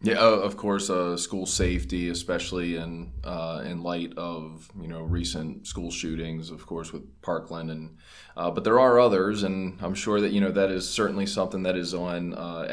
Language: English